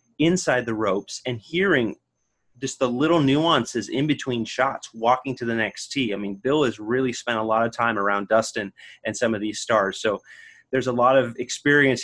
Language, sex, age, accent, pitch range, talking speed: English, male, 30-49, American, 110-130 Hz, 200 wpm